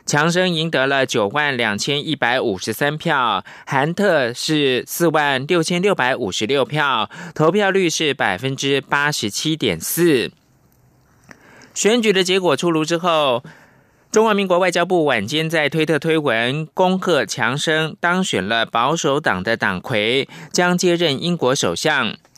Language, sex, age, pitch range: German, male, 20-39, 130-175 Hz